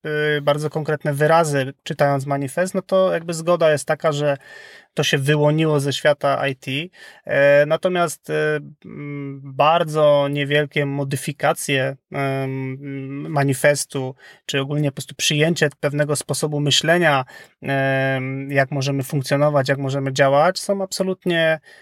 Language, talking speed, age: Polish, 105 wpm, 30-49